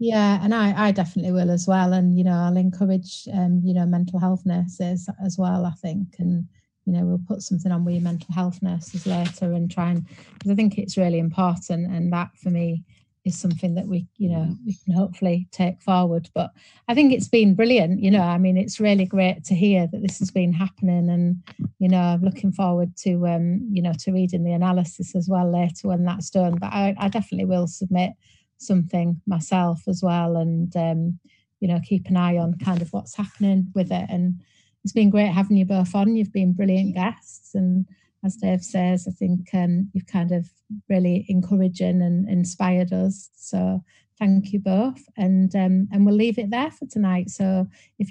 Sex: female